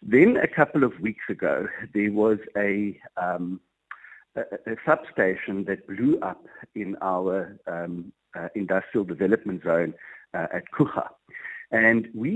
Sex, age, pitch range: male, 50-69, 90-110 Hz